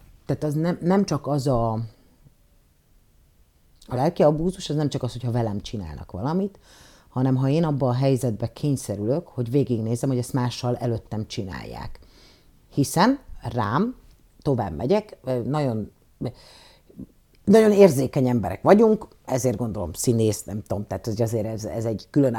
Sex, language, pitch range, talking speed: female, Hungarian, 110-145 Hz, 145 wpm